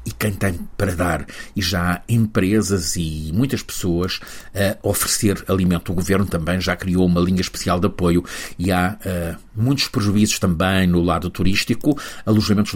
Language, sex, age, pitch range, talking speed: Portuguese, male, 50-69, 90-120 Hz, 160 wpm